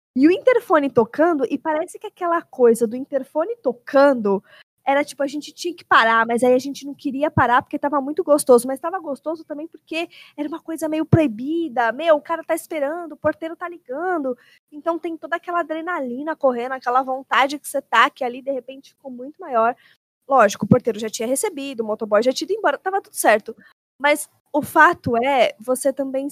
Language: Portuguese